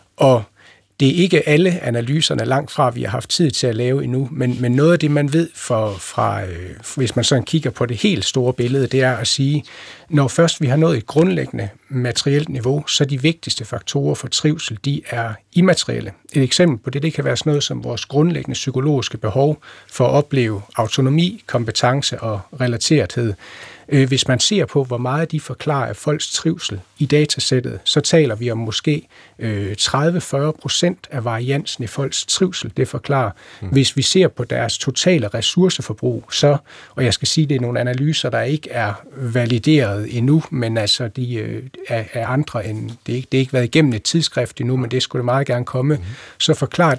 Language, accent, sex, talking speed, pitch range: Danish, native, male, 190 wpm, 120-150 Hz